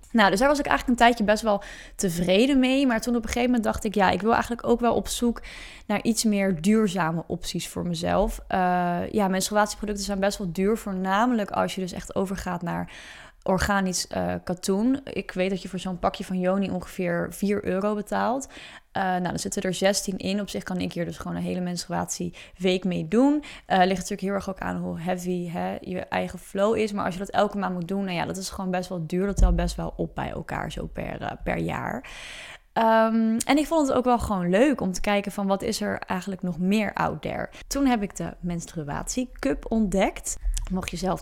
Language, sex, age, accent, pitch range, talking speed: Dutch, female, 20-39, Dutch, 175-210 Hz, 230 wpm